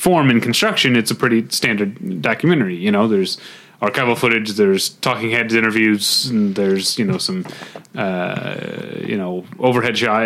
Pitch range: 100-125 Hz